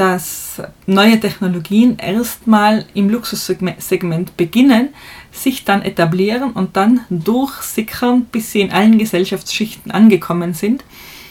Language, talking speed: German, 105 wpm